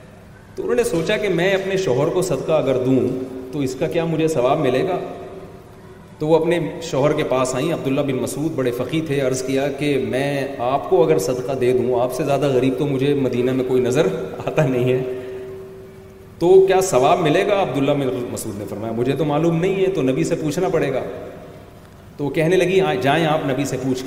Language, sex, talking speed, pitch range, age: Urdu, male, 210 wpm, 125-155 Hz, 30-49